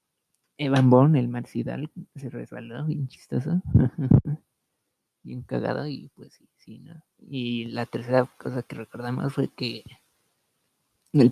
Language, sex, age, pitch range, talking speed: Spanish, male, 30-49, 120-135 Hz, 125 wpm